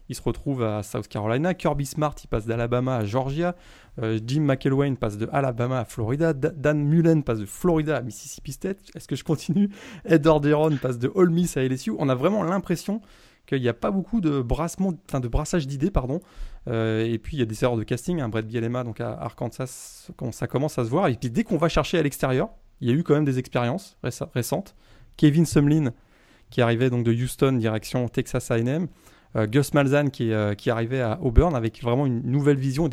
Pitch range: 120-155 Hz